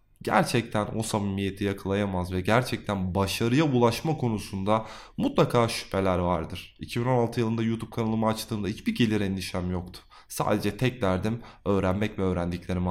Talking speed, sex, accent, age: 125 wpm, male, native, 20-39